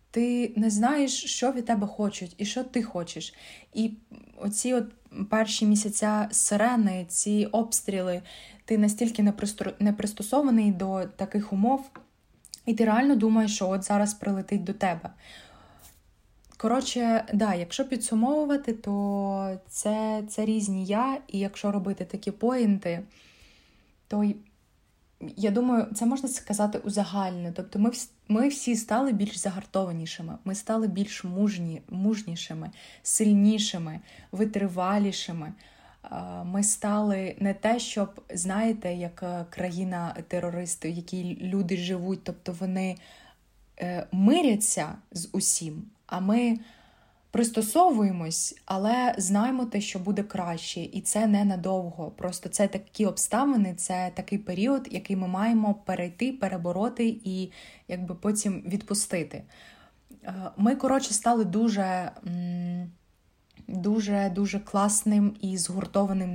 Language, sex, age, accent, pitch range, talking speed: Ukrainian, female, 20-39, native, 185-220 Hz, 115 wpm